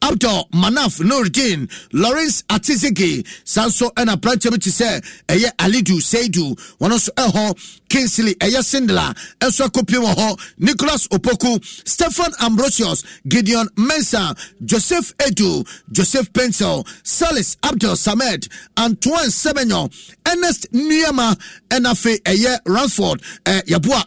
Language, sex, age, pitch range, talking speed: English, male, 50-69, 190-255 Hz, 100 wpm